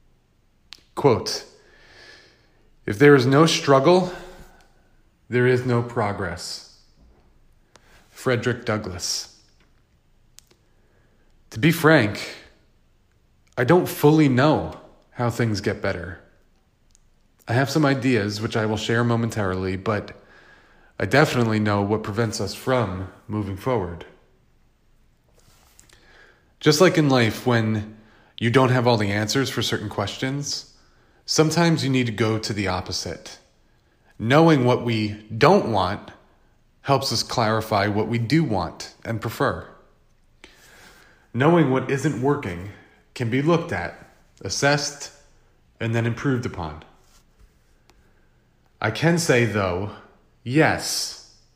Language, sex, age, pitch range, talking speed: English, male, 30-49, 105-140 Hz, 110 wpm